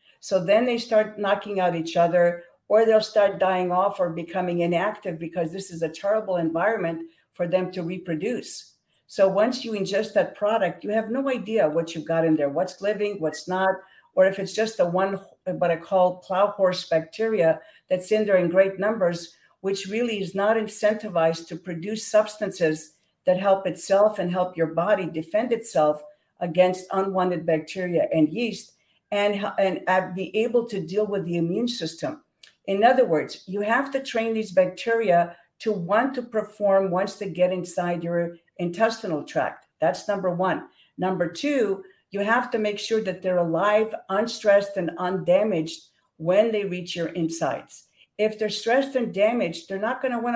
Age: 50-69